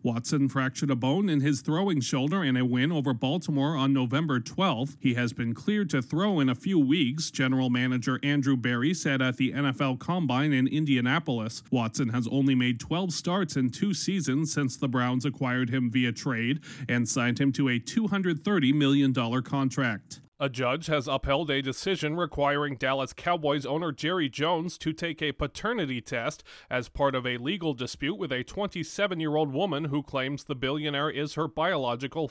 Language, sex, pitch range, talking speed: English, male, 130-155 Hz, 175 wpm